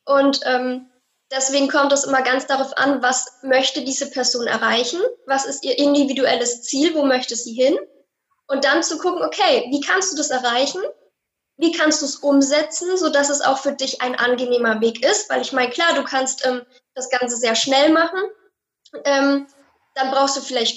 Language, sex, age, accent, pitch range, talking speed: German, female, 10-29, German, 255-295 Hz, 185 wpm